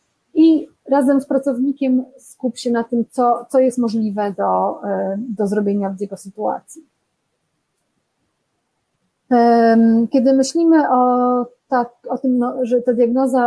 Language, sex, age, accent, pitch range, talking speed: Polish, female, 30-49, native, 215-265 Hz, 125 wpm